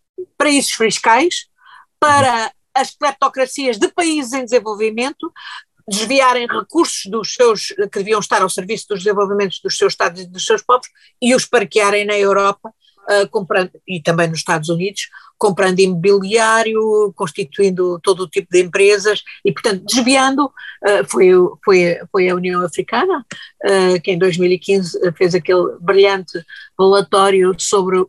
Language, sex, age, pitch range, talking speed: Portuguese, female, 50-69, 190-265 Hz, 140 wpm